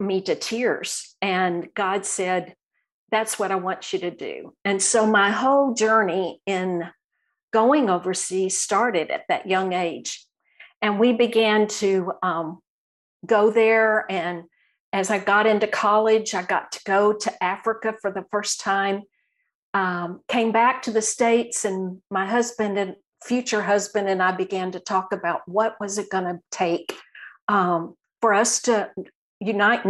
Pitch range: 185-225 Hz